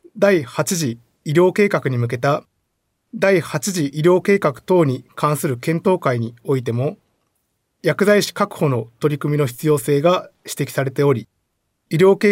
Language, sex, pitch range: Japanese, male, 135-185 Hz